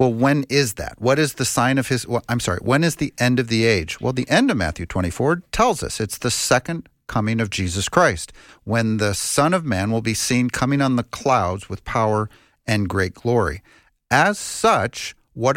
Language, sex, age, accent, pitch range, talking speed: English, male, 50-69, American, 100-135 Hz, 210 wpm